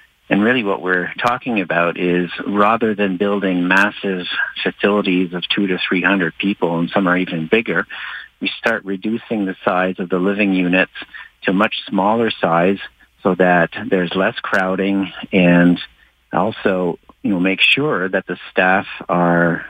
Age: 50-69